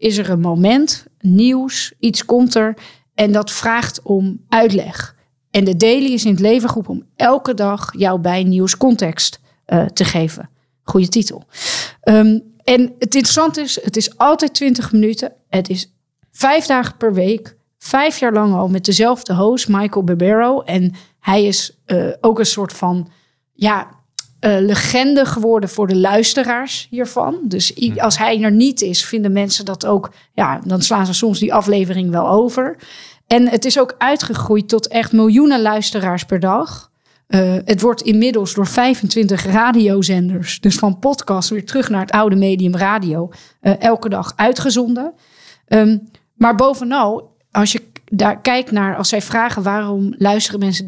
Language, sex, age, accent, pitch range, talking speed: Dutch, female, 40-59, Dutch, 190-235 Hz, 160 wpm